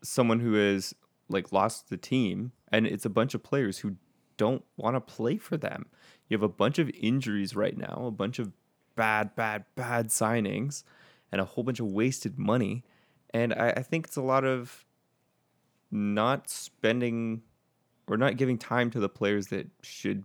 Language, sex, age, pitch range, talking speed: English, male, 20-39, 105-125 Hz, 180 wpm